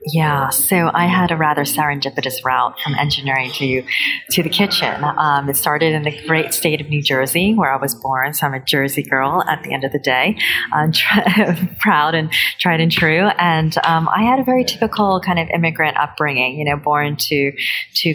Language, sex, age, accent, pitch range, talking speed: English, female, 30-49, American, 145-175 Hz, 205 wpm